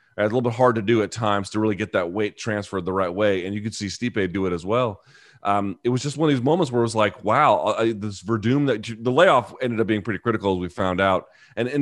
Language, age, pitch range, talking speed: English, 30-49, 110-140 Hz, 280 wpm